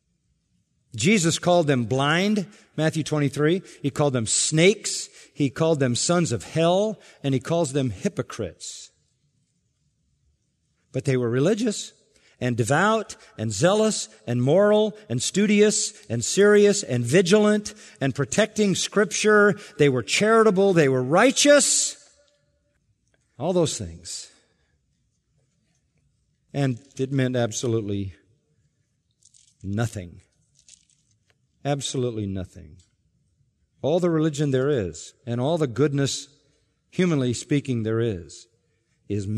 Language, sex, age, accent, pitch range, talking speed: English, male, 50-69, American, 115-170 Hz, 105 wpm